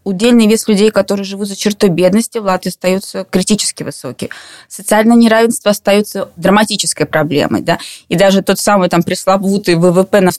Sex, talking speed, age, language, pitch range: female, 155 wpm, 20-39, Russian, 175-210 Hz